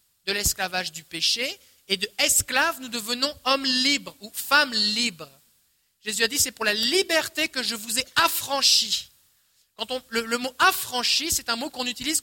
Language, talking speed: French, 180 wpm